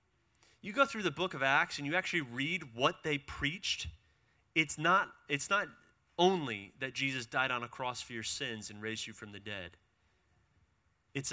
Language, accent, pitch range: English, American, 100-145 Hz